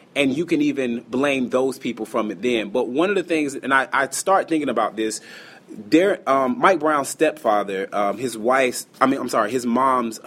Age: 30-49